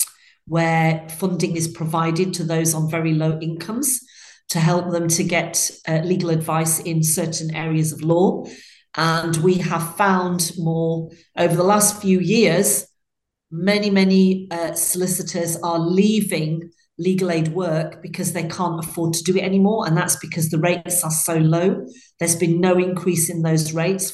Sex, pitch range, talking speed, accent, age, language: female, 165-185 Hz, 160 wpm, British, 40-59, English